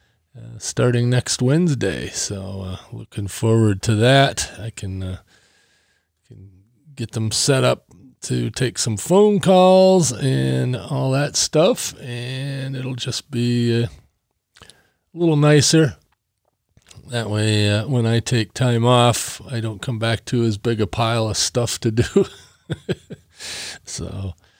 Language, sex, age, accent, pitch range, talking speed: English, male, 40-59, American, 110-135 Hz, 135 wpm